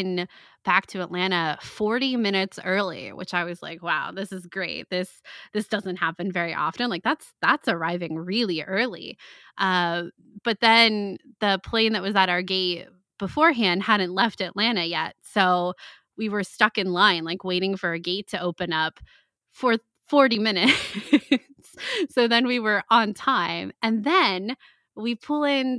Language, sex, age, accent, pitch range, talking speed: English, female, 20-39, American, 180-235 Hz, 160 wpm